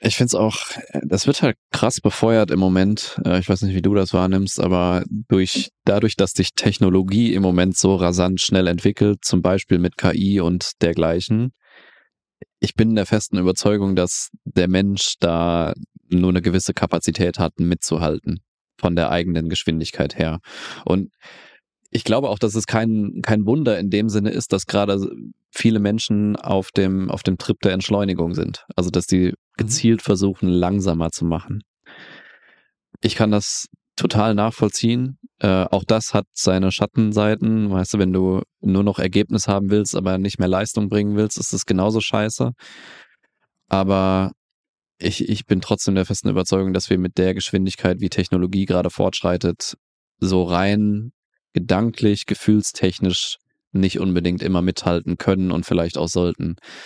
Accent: German